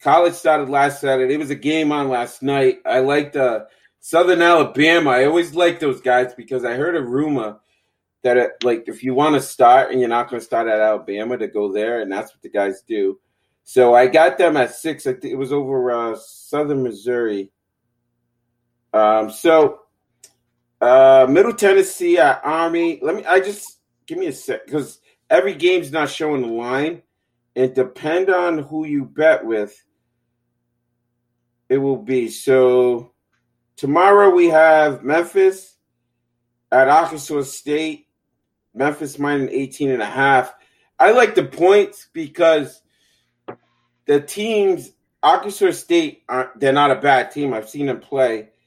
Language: English